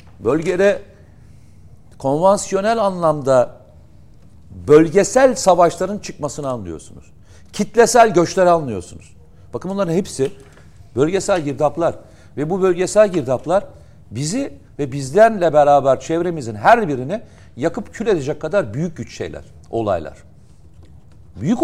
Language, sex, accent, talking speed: Turkish, male, native, 95 wpm